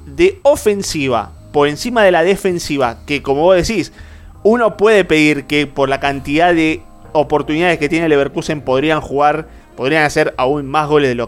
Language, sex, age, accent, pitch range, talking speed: Spanish, male, 30-49, Argentinian, 140-180 Hz, 170 wpm